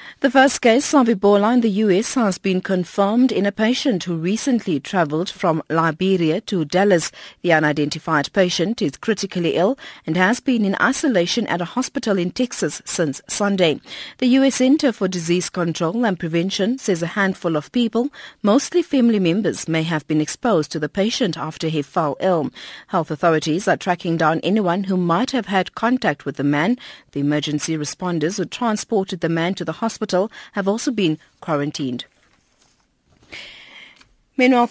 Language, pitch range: English, 165-220 Hz